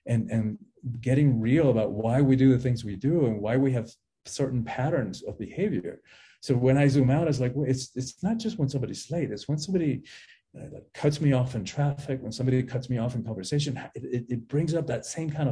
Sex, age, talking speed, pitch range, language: male, 40-59, 230 wpm, 115-145 Hz, English